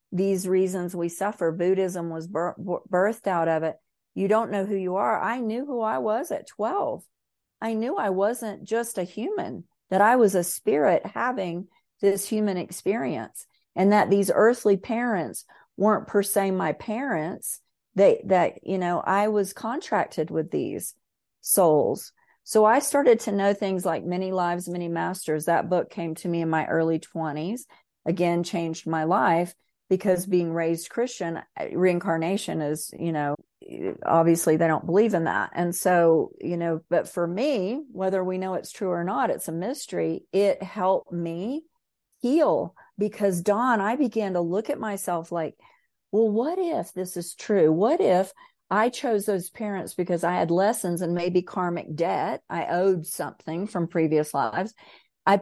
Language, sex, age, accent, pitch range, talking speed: English, female, 40-59, American, 175-215 Hz, 165 wpm